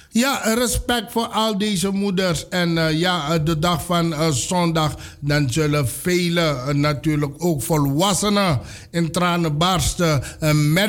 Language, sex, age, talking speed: Dutch, male, 60-79, 145 wpm